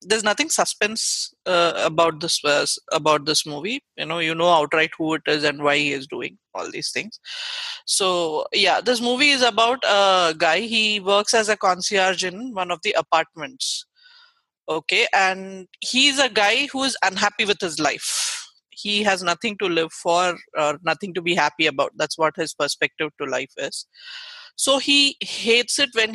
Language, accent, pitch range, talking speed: English, Indian, 165-235 Hz, 180 wpm